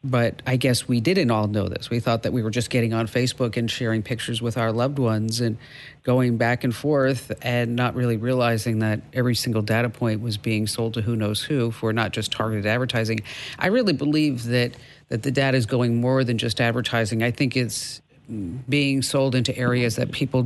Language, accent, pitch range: English, American, 115-135 Hz